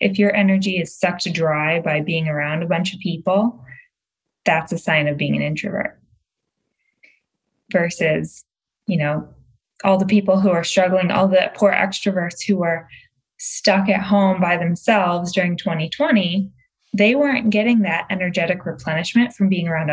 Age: 20-39